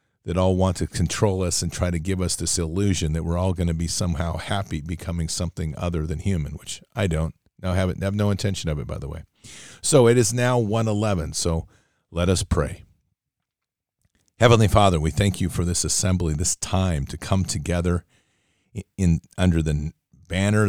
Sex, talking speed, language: male, 195 wpm, English